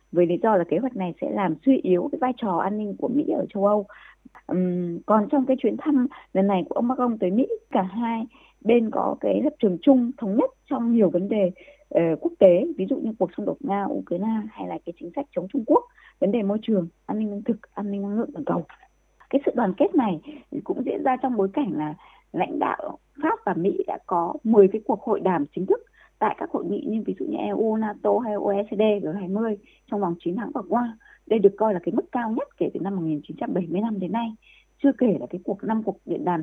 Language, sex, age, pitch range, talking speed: Vietnamese, female, 20-39, 195-275 Hz, 240 wpm